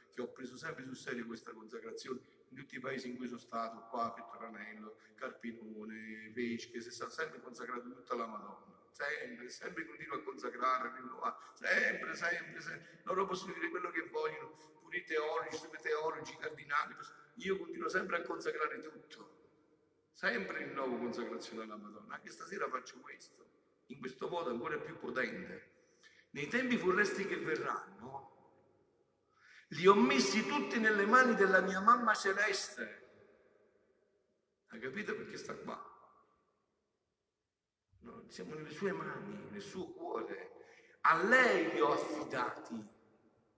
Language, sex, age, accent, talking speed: Italian, male, 50-69, native, 145 wpm